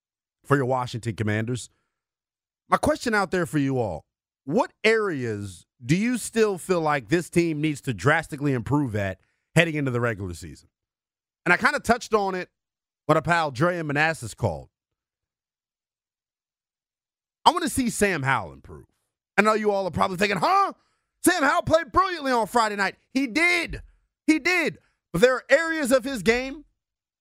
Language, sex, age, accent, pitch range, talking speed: English, male, 30-49, American, 140-220 Hz, 170 wpm